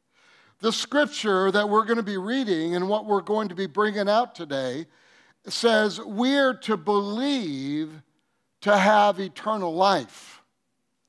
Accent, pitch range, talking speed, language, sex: American, 175-225 Hz, 135 wpm, English, male